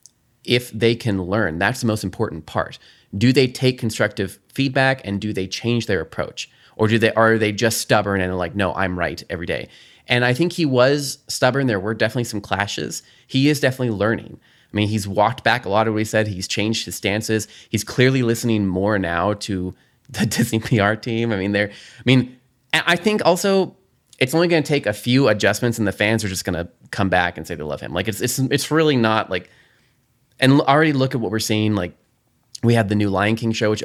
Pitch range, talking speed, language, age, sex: 100-120 Hz, 225 wpm, English, 20-39, male